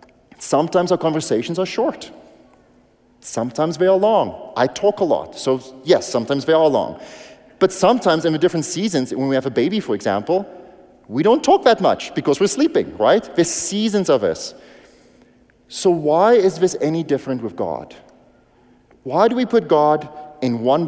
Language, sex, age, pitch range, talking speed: English, male, 30-49, 120-170 Hz, 170 wpm